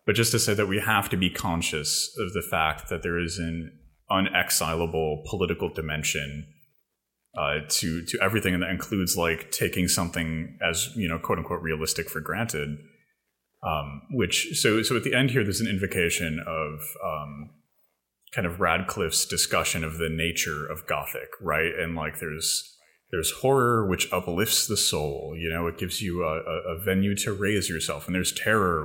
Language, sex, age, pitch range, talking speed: English, male, 30-49, 80-100 Hz, 175 wpm